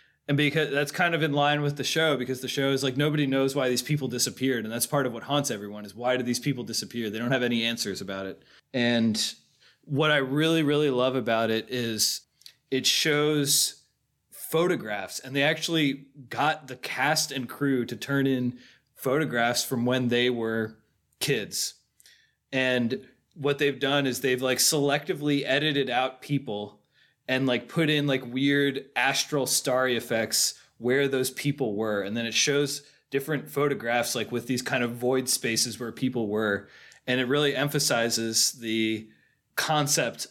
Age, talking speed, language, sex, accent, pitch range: 30-49, 175 wpm, English, male, American, 120-145 Hz